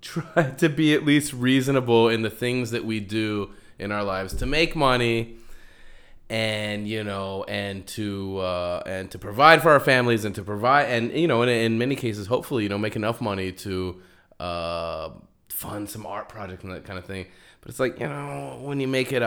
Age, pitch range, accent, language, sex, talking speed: 20-39, 100-130 Hz, American, English, male, 205 wpm